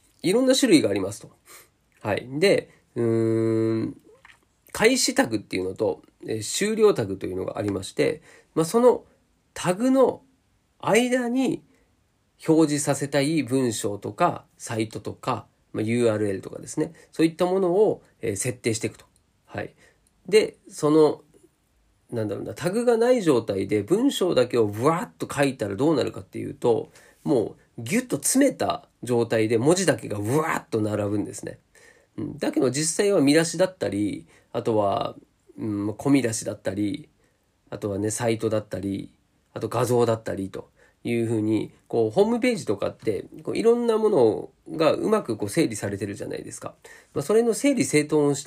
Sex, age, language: male, 40-59, Japanese